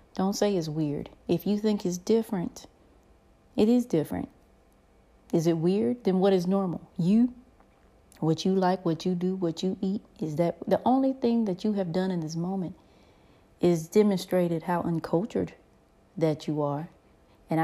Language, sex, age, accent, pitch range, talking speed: English, female, 30-49, American, 155-195 Hz, 165 wpm